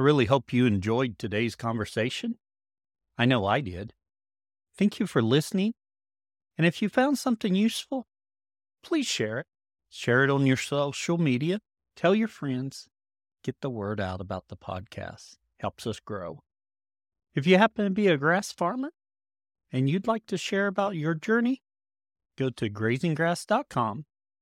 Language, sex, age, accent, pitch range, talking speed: English, male, 40-59, American, 100-165 Hz, 150 wpm